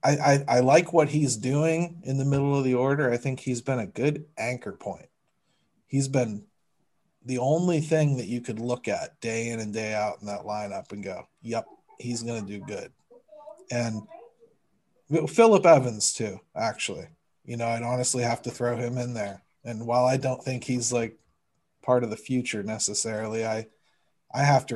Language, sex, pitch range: English, male, 110-140 Hz